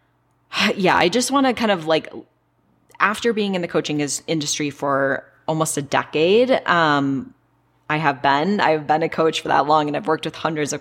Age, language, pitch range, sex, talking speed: 10-29, English, 140-175 Hz, female, 195 wpm